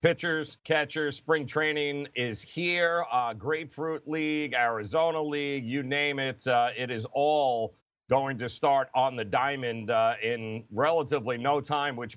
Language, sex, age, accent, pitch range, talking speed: English, male, 40-59, American, 130-160 Hz, 150 wpm